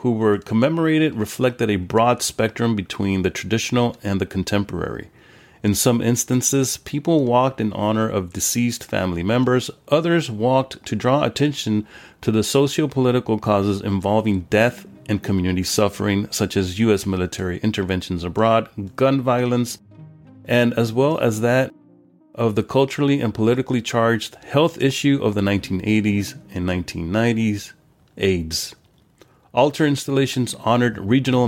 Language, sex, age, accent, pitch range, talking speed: English, male, 30-49, American, 100-125 Hz, 130 wpm